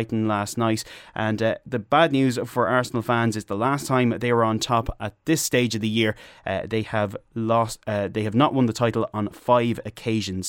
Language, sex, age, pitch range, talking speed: English, male, 20-39, 105-125 Hz, 215 wpm